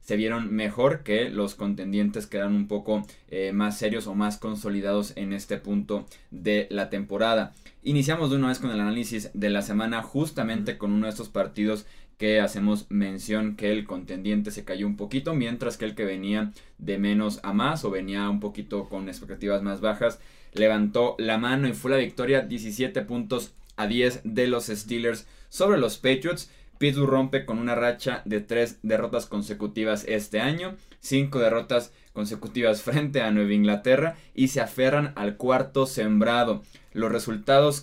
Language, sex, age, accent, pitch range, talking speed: Spanish, male, 20-39, Mexican, 105-130 Hz, 170 wpm